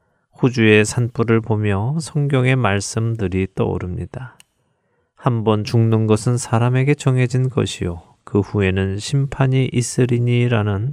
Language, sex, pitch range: Korean, male, 100-125 Hz